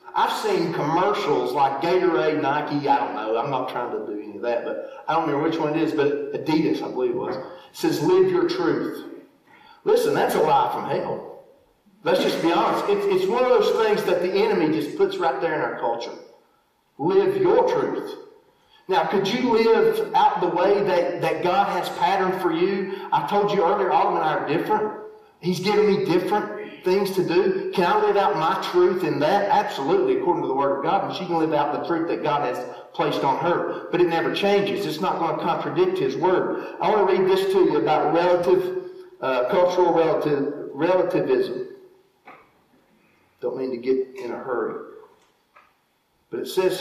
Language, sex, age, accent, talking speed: English, male, 40-59, American, 200 wpm